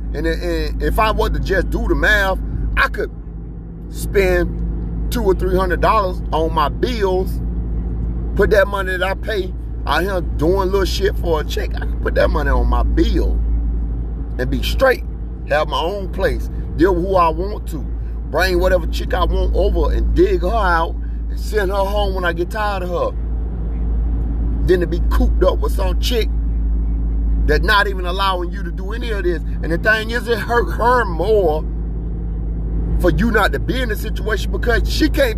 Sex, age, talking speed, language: male, 30-49, 190 wpm, English